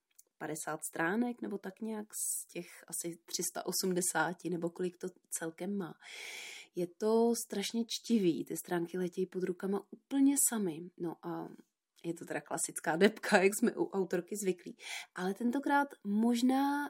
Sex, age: female, 30-49